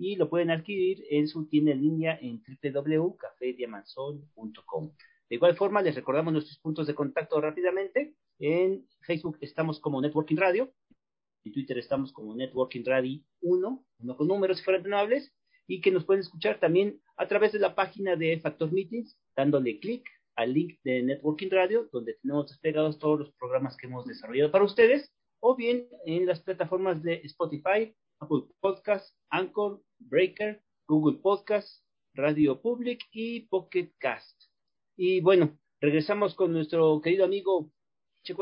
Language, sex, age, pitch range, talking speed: Spanish, male, 40-59, 150-215 Hz, 150 wpm